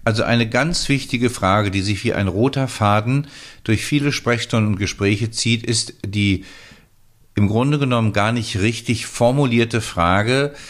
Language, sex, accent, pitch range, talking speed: German, male, German, 100-120 Hz, 150 wpm